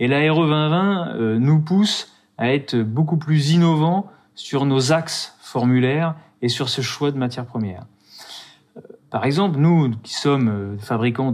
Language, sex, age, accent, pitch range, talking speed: French, male, 30-49, French, 120-155 Hz, 145 wpm